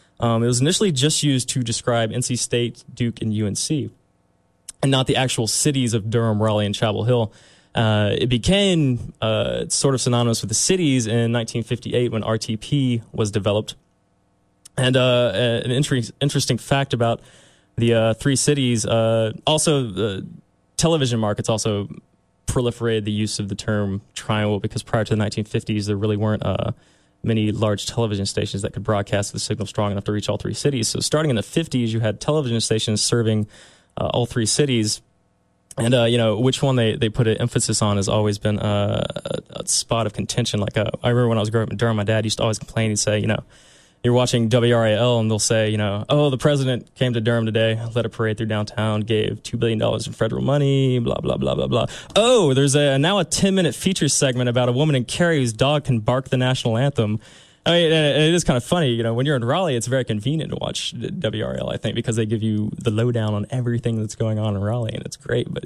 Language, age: English, 20-39